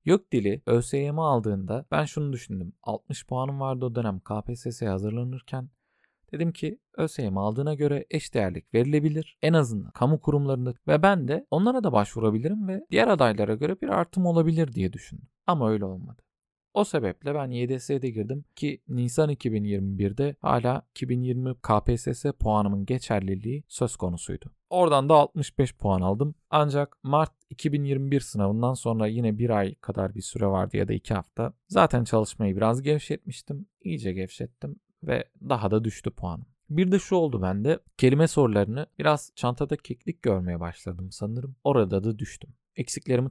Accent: native